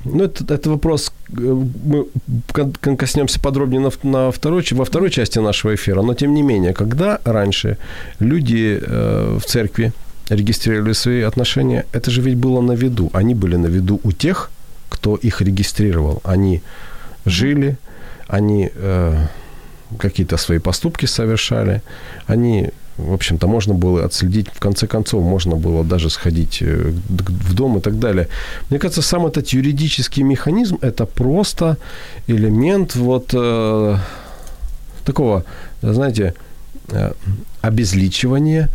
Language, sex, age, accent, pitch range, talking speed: Ukrainian, male, 40-59, native, 95-130 Hz, 130 wpm